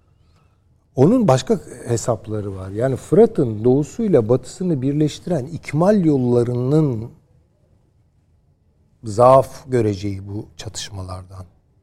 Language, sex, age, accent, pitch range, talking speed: Turkish, male, 60-79, native, 105-150 Hz, 75 wpm